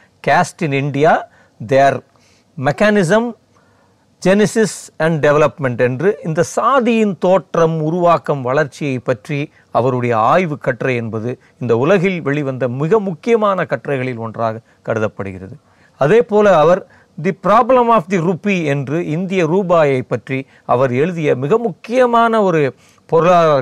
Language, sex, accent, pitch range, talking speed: Tamil, male, native, 130-195 Hz, 115 wpm